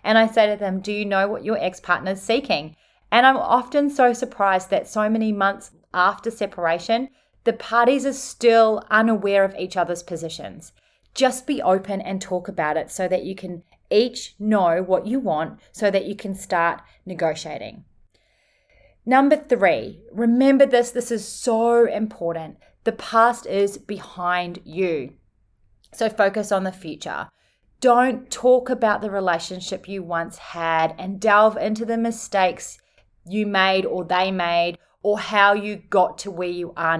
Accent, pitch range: Australian, 185-230 Hz